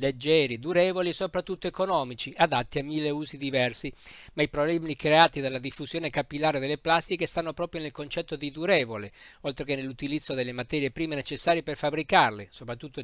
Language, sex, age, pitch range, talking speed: Italian, male, 50-69, 140-165 Hz, 160 wpm